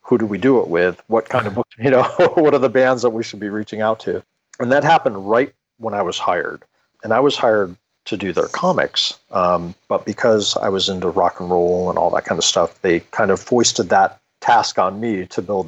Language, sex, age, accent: English, male, 40-59, American